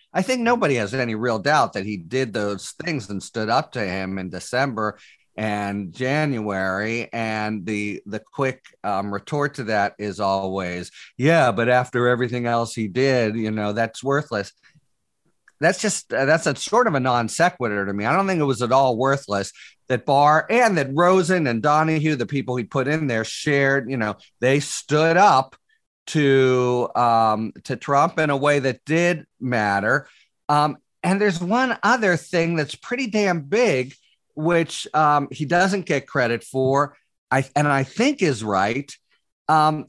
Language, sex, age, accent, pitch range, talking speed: English, male, 40-59, American, 120-175 Hz, 170 wpm